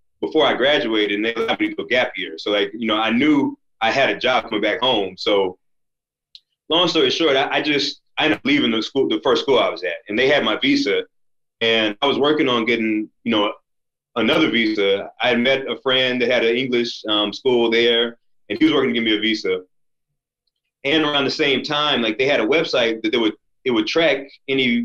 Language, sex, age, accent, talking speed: English, male, 30-49, American, 230 wpm